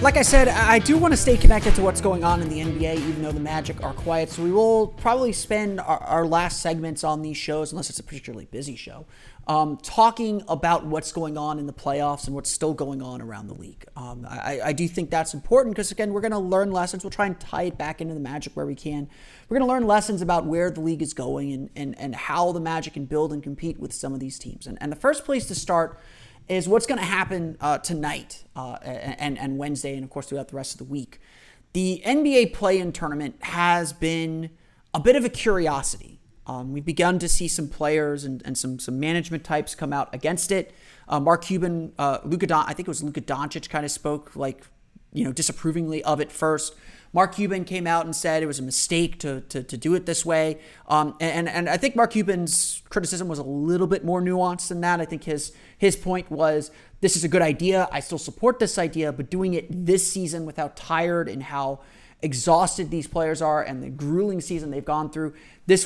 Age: 30-49